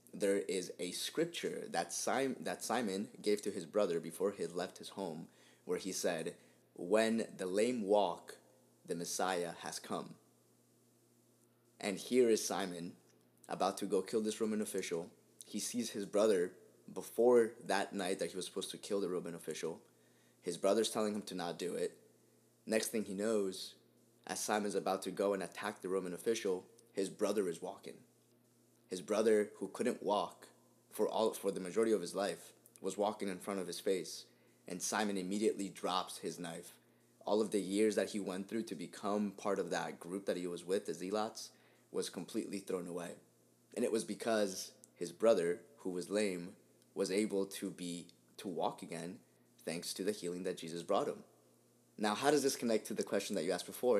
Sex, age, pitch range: male, 20-39, 90-105 Hz